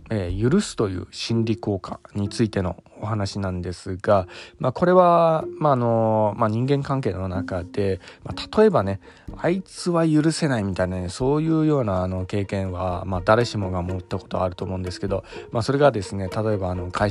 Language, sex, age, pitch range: Japanese, male, 20-39, 95-135 Hz